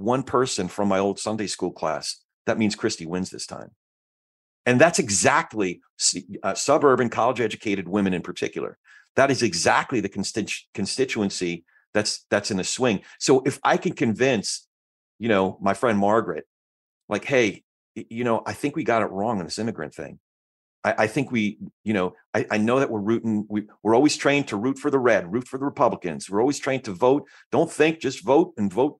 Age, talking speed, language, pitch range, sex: 40-59, 195 wpm, English, 100-125 Hz, male